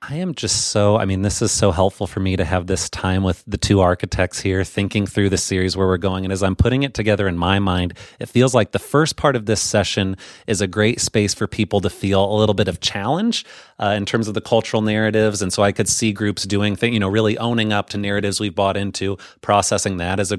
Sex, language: male, English